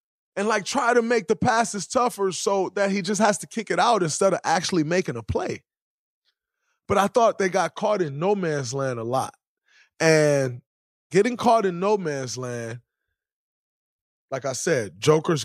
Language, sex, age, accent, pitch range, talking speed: English, male, 20-39, American, 135-180 Hz, 180 wpm